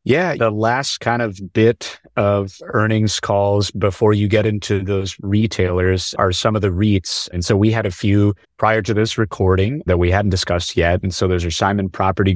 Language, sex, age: English, male, 30-49